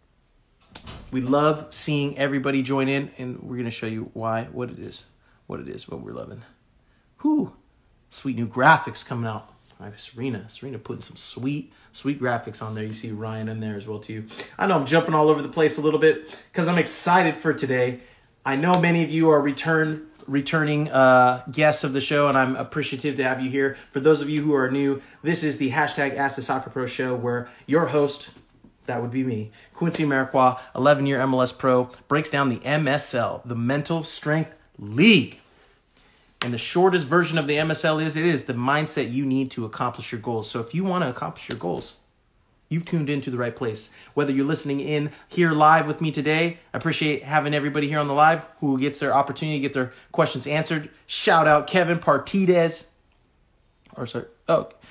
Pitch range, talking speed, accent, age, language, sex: 125-155 Hz, 200 wpm, American, 30-49, English, male